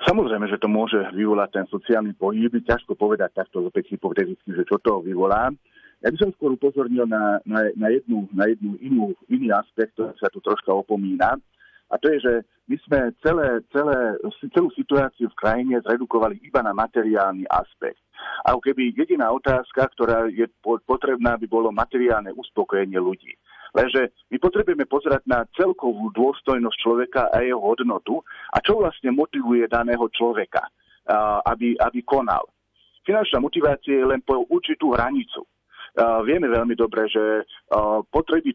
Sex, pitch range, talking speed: male, 110-150 Hz, 150 wpm